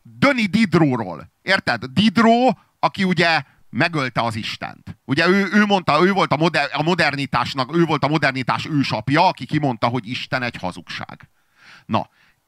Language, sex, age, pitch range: Hungarian, male, 40-59, 145-220 Hz